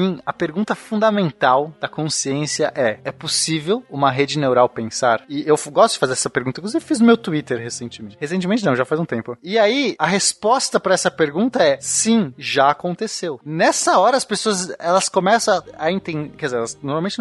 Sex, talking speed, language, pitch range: male, 190 wpm, Portuguese, 150-215 Hz